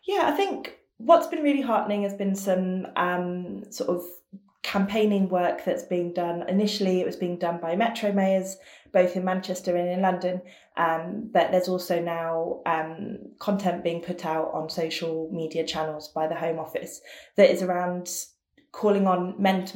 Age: 20-39